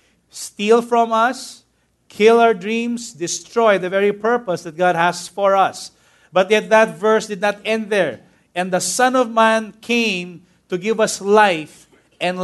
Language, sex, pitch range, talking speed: English, male, 180-245 Hz, 165 wpm